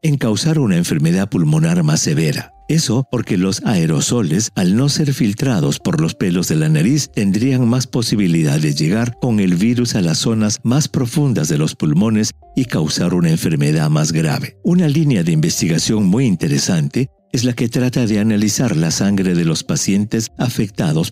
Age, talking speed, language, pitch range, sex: 50-69, 175 wpm, English, 110-160 Hz, male